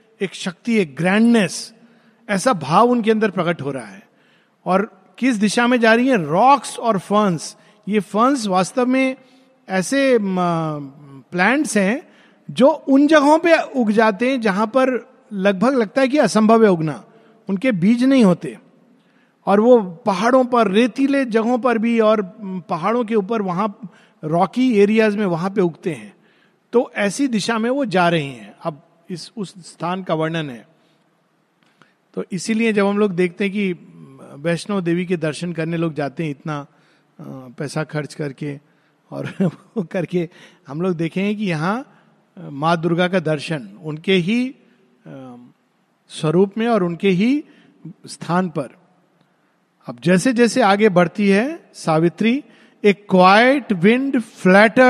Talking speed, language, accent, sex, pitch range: 145 wpm, Hindi, native, male, 175-230 Hz